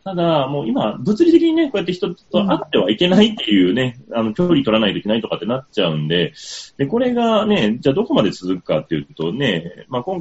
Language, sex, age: Japanese, male, 30-49